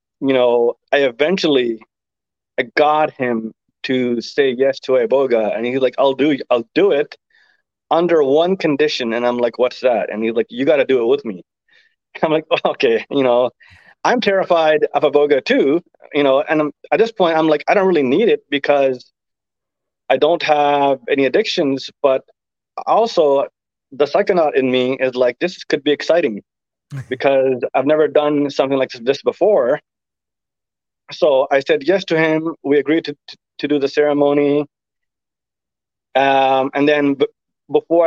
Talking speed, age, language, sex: 175 wpm, 30-49, English, male